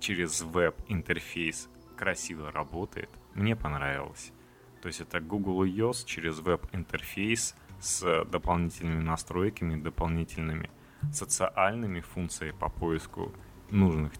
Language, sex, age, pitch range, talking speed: Russian, male, 30-49, 80-100 Hz, 95 wpm